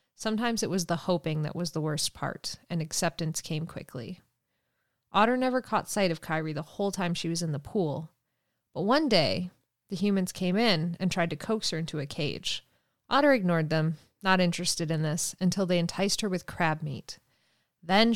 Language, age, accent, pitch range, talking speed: English, 30-49, American, 165-195 Hz, 190 wpm